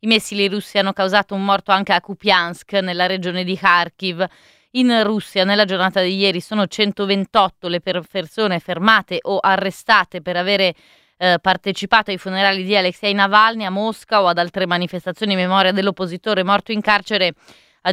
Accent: native